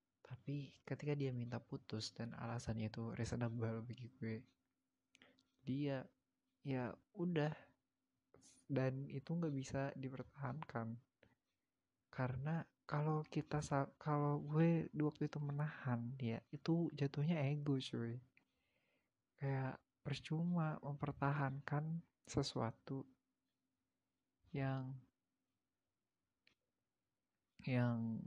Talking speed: 85 wpm